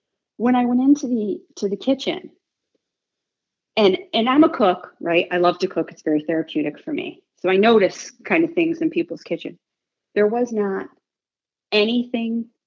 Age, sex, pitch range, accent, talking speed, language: 40-59, female, 175-290 Hz, American, 170 wpm, English